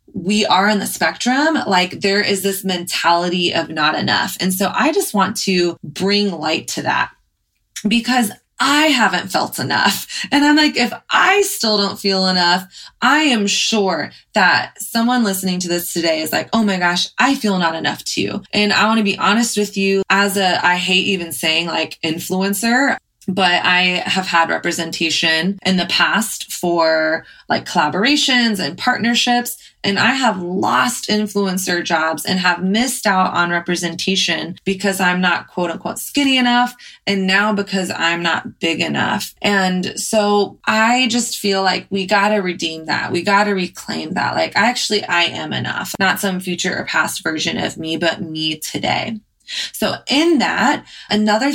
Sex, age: female, 20-39